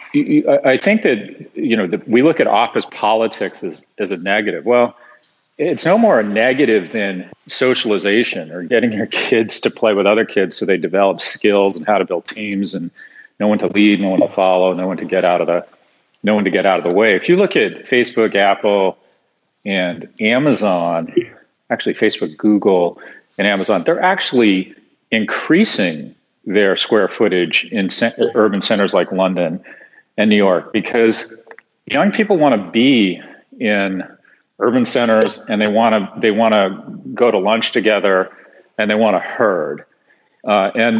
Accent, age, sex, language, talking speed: American, 40-59, male, English, 175 wpm